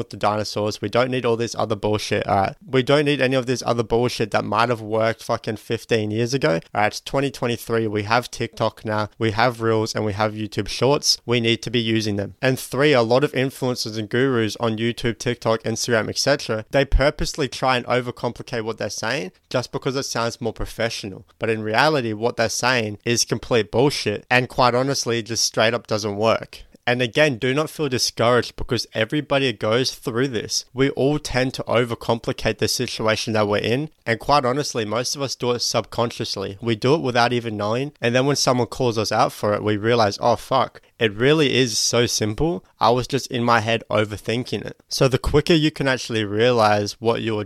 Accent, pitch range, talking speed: Australian, 110-125 Hz, 210 wpm